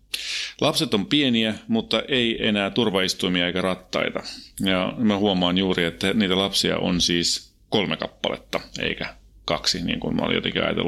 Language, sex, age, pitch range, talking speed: Finnish, male, 30-49, 90-110 Hz, 145 wpm